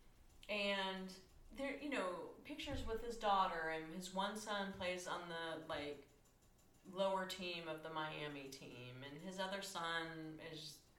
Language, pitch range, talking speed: English, 170-245 Hz, 145 wpm